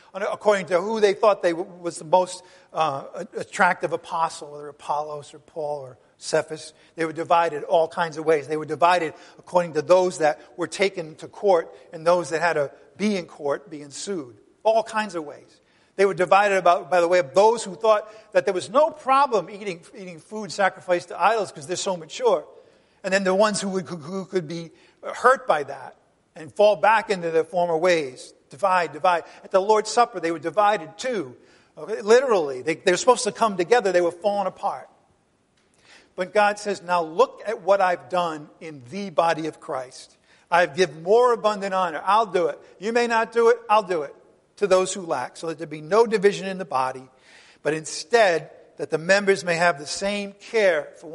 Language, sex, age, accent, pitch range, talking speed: English, male, 50-69, American, 165-210 Hz, 200 wpm